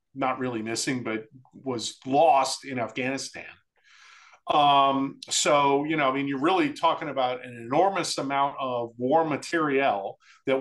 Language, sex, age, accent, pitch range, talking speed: English, male, 40-59, American, 135-205 Hz, 140 wpm